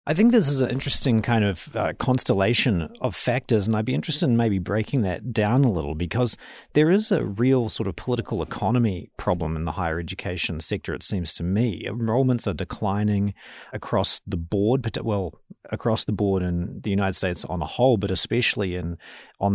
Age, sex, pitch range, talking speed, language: 30-49, male, 95-120 Hz, 195 wpm, English